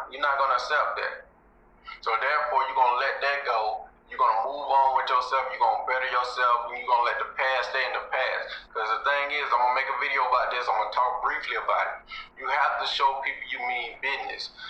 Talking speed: 260 wpm